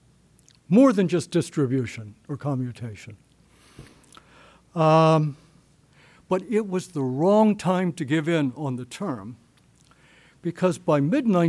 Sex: male